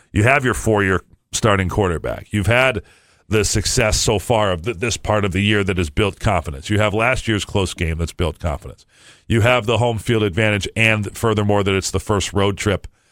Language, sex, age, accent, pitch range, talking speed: English, male, 50-69, American, 90-115 Hz, 205 wpm